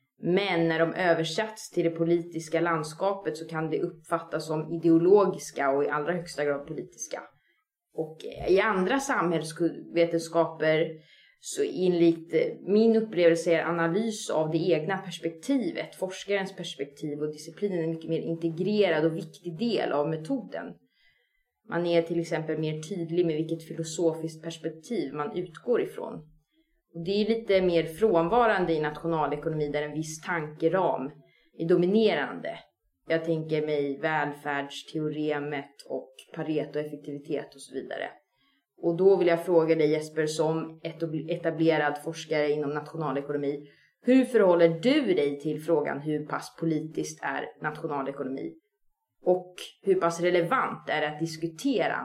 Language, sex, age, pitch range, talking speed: Swedish, female, 20-39, 155-180 Hz, 130 wpm